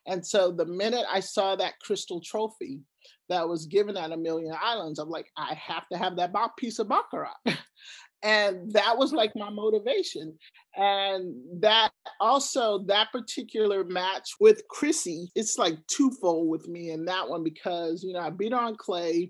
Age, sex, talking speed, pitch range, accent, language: 40-59, male, 170 wpm, 170-225 Hz, American, English